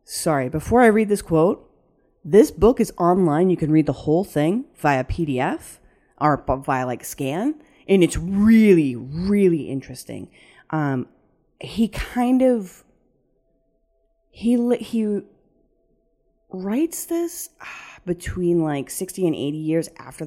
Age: 30-49